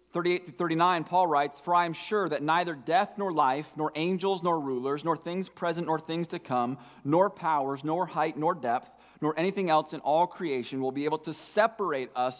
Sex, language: male, English